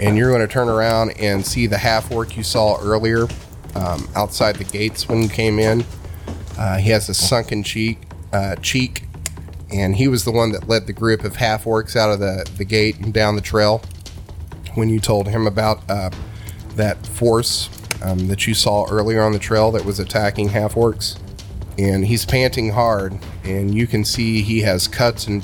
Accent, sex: American, male